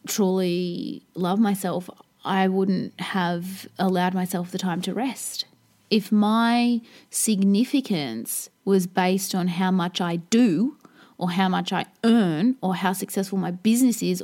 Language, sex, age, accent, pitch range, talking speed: English, female, 20-39, Australian, 190-250 Hz, 140 wpm